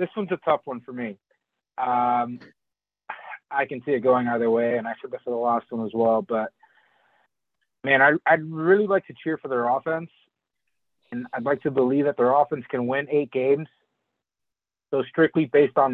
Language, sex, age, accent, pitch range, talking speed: English, male, 30-49, American, 125-155 Hz, 195 wpm